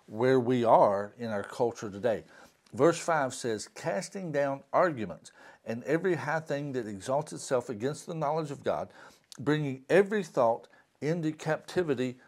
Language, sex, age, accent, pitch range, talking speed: English, male, 60-79, American, 115-155 Hz, 145 wpm